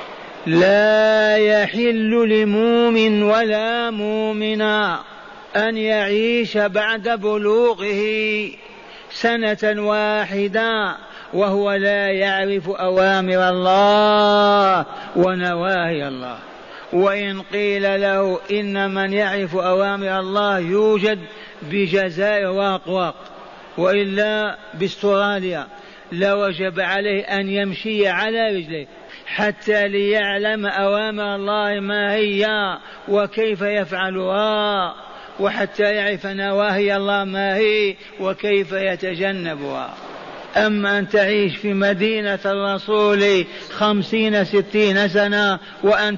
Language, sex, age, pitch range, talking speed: Arabic, male, 40-59, 195-210 Hz, 85 wpm